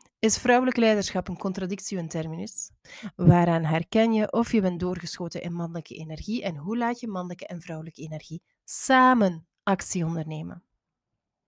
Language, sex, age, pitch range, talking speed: Dutch, female, 20-39, 165-210 Hz, 145 wpm